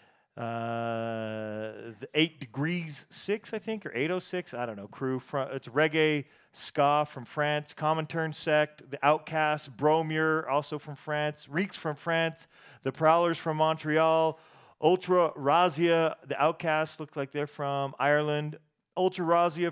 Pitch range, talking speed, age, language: 135-160 Hz, 140 wpm, 40-59, English